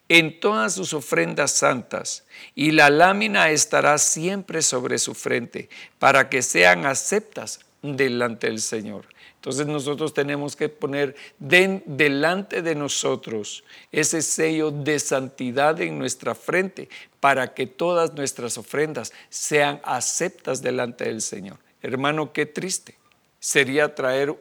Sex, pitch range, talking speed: male, 135-165 Hz, 125 wpm